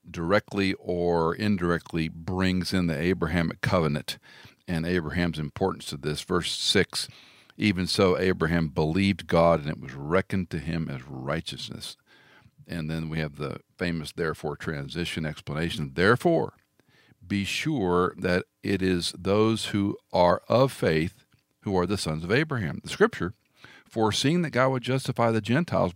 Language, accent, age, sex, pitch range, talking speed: English, American, 50-69, male, 85-105 Hz, 145 wpm